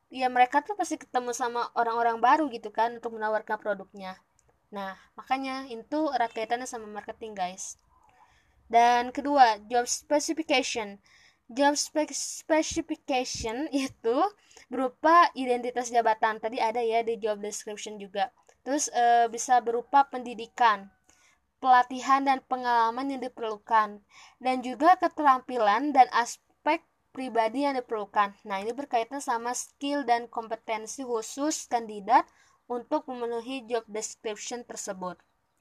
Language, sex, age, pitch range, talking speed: Indonesian, female, 20-39, 225-275 Hz, 115 wpm